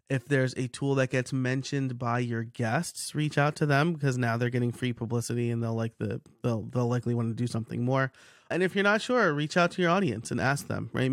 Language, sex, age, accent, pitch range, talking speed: English, male, 30-49, American, 130-180 Hz, 250 wpm